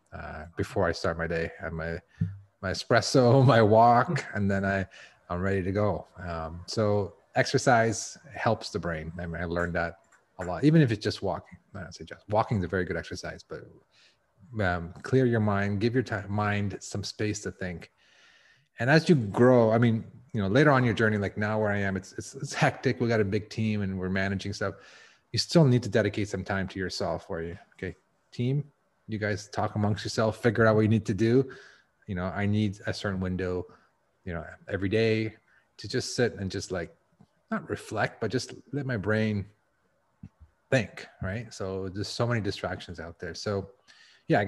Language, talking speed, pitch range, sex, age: English, 205 wpm, 95-115 Hz, male, 30-49